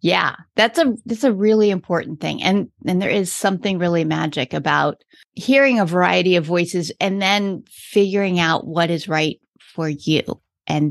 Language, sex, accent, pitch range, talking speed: English, female, American, 170-200 Hz, 170 wpm